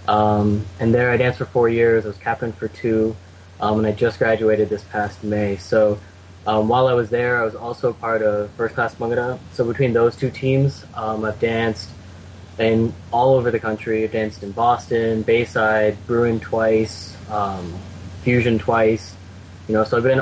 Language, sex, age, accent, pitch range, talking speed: English, male, 10-29, American, 100-115 Hz, 185 wpm